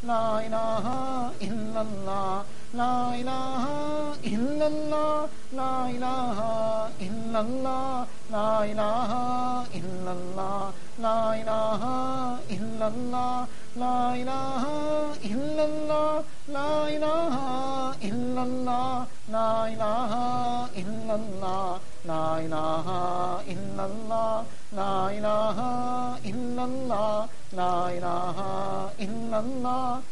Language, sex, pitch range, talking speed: English, male, 195-245 Hz, 65 wpm